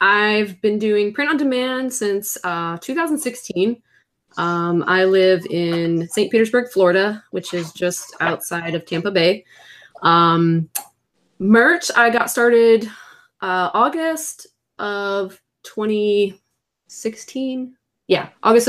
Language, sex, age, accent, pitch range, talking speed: English, female, 20-39, American, 170-220 Hz, 105 wpm